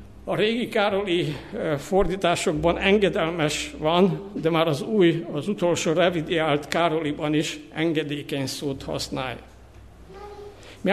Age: 60-79